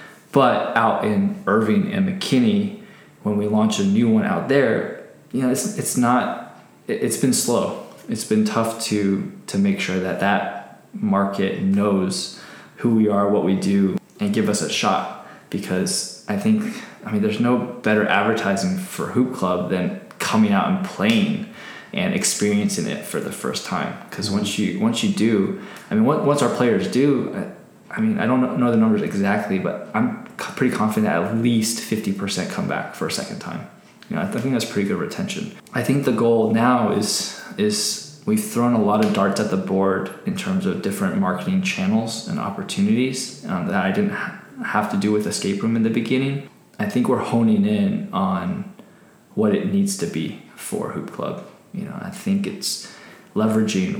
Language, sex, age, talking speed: English, male, 20-39, 185 wpm